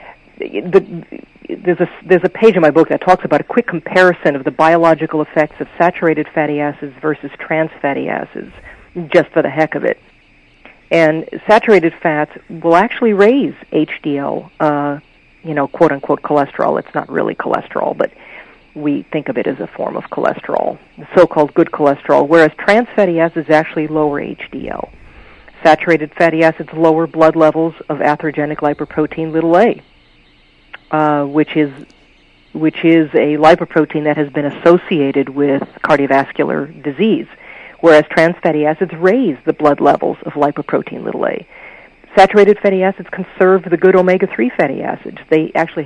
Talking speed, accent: 155 wpm, American